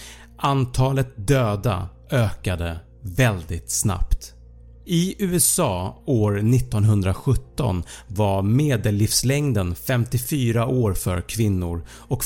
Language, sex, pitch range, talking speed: Swedish, male, 95-135 Hz, 80 wpm